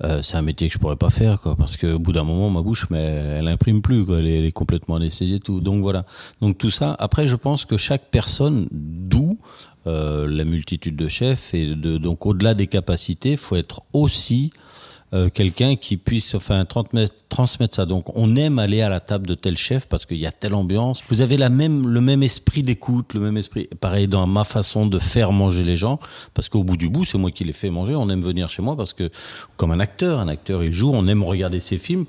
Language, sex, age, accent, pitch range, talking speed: French, male, 40-59, French, 90-120 Hz, 245 wpm